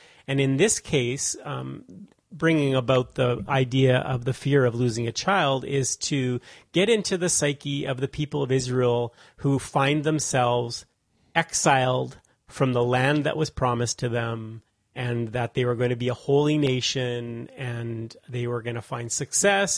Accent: American